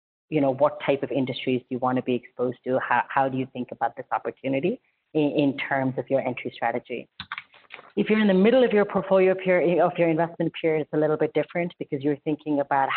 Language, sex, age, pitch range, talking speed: English, female, 30-49, 130-155 Hz, 230 wpm